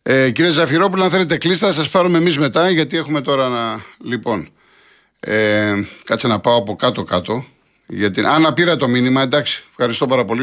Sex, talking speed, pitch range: male, 175 wpm, 115-150 Hz